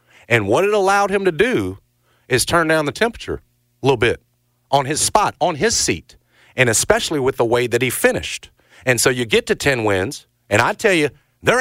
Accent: American